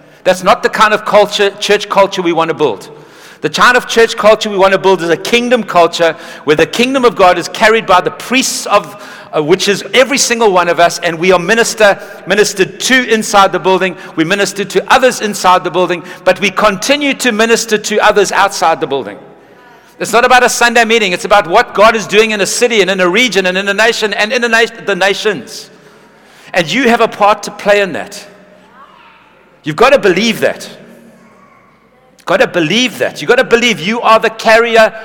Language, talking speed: English, 205 wpm